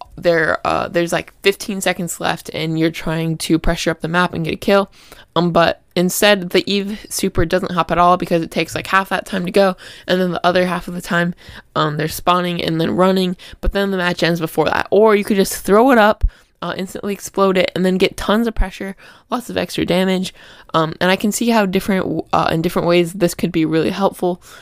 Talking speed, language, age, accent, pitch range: 235 wpm, English, 20-39, American, 170-195 Hz